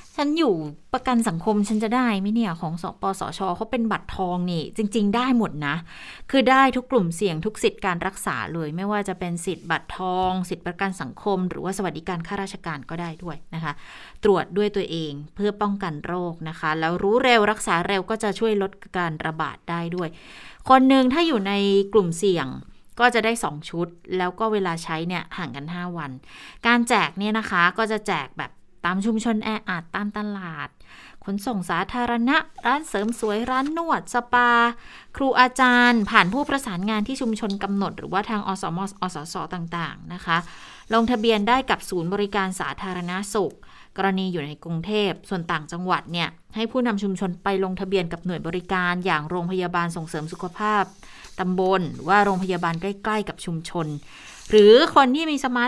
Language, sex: Thai, female